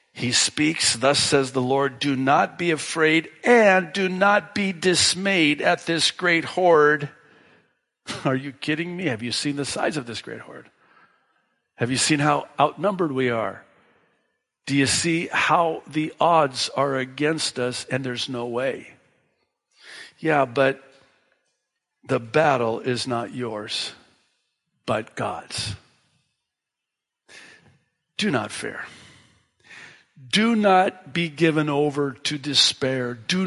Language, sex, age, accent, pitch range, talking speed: English, male, 50-69, American, 130-170 Hz, 130 wpm